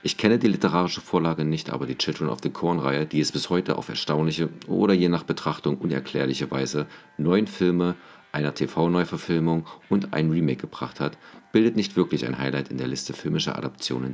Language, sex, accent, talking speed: German, male, German, 185 wpm